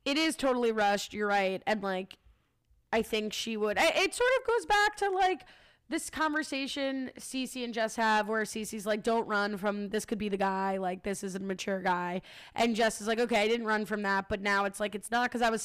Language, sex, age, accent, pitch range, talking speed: English, female, 20-39, American, 195-235 Hz, 235 wpm